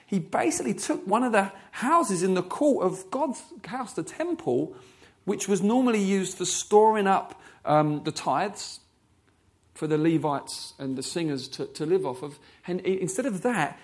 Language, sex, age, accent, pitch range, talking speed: English, male, 40-59, British, 165-220 Hz, 175 wpm